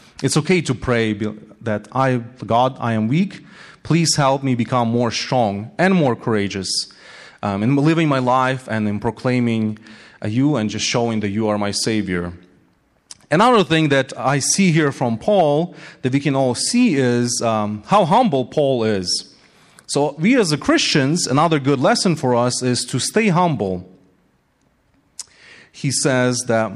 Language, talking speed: English, 160 wpm